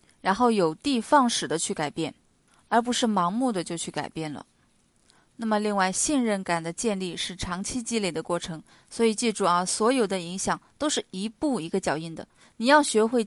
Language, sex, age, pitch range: Chinese, female, 20-39, 180-245 Hz